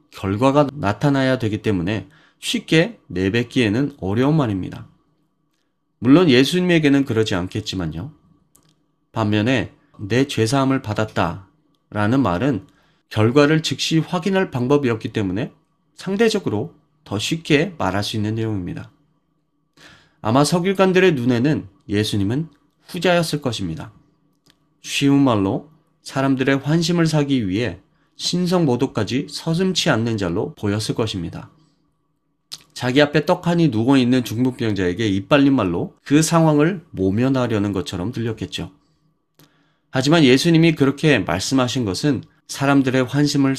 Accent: native